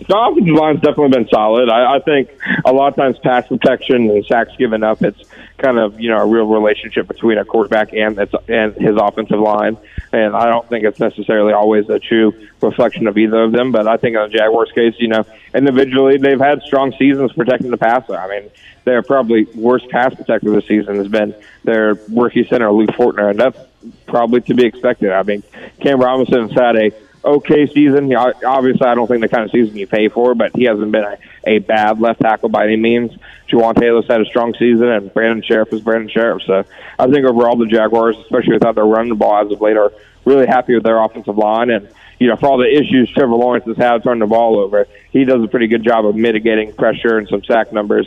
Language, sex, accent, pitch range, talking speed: English, male, American, 110-125 Hz, 225 wpm